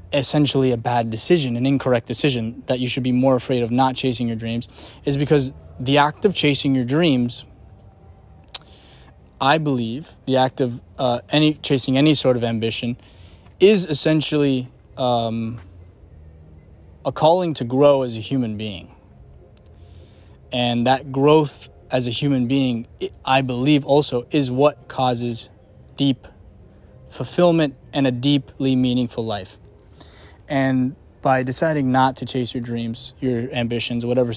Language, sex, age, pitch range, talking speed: English, male, 20-39, 110-135 Hz, 140 wpm